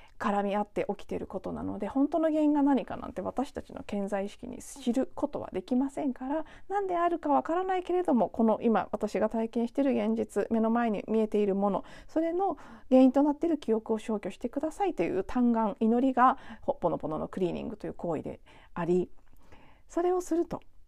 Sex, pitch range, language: female, 185-265 Hz, Japanese